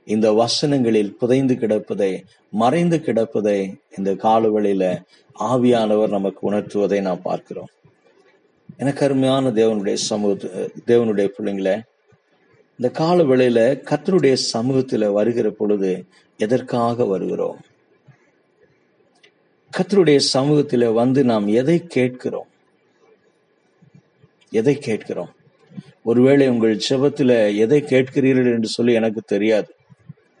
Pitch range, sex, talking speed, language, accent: 105-140 Hz, male, 90 wpm, Tamil, native